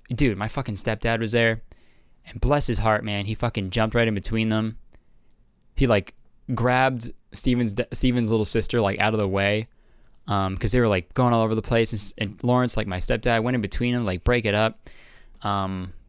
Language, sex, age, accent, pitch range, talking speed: English, male, 20-39, American, 105-135 Hz, 200 wpm